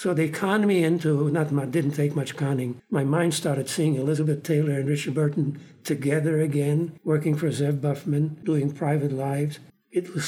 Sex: male